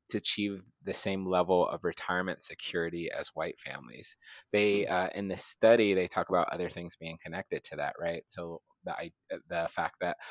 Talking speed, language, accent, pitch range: 180 wpm, English, American, 85-95 Hz